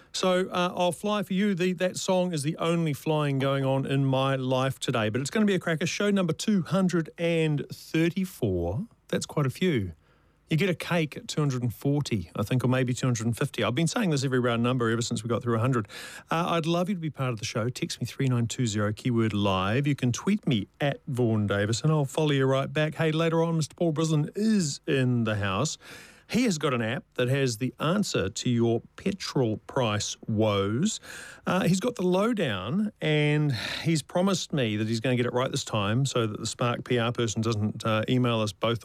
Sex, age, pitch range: male, 40-59, 115-165 Hz